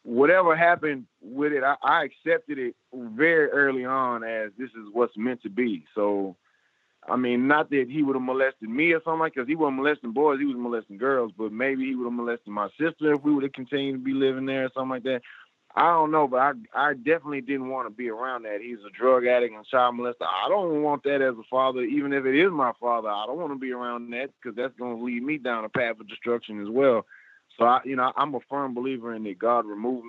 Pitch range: 120-140 Hz